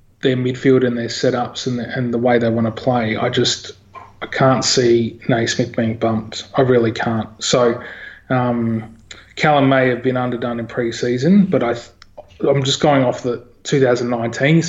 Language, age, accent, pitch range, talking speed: English, 20-39, Australian, 115-135 Hz, 170 wpm